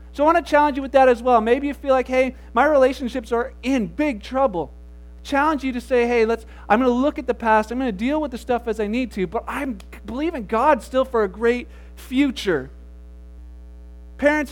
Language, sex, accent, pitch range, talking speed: English, male, American, 210-285 Hz, 230 wpm